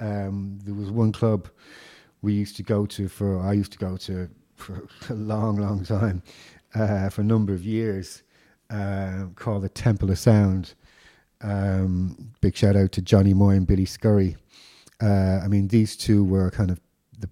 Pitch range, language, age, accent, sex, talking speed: 90-105 Hz, English, 40-59, British, male, 180 wpm